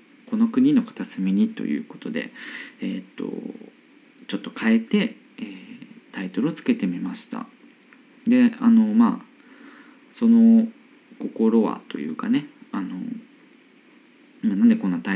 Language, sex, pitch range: Japanese, male, 230-275 Hz